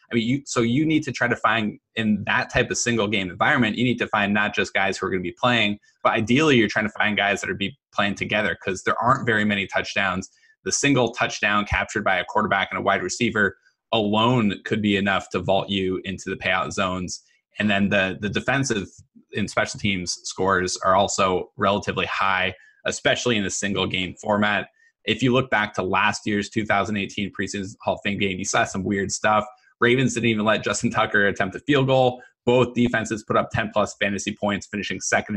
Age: 20-39